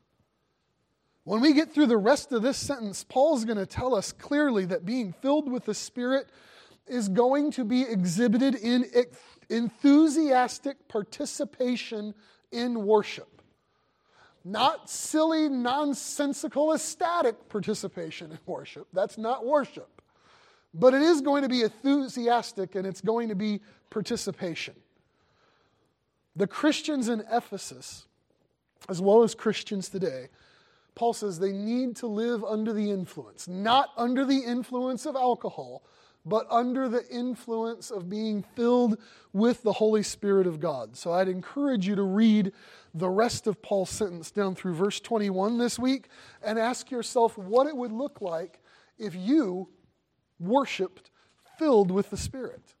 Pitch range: 200-260 Hz